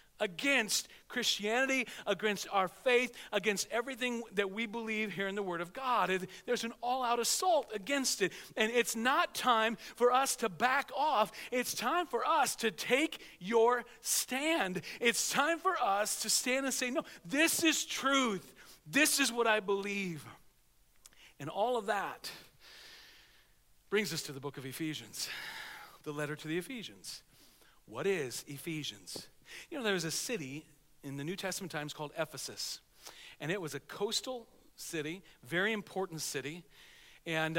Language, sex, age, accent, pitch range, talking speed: English, male, 40-59, American, 175-240 Hz, 155 wpm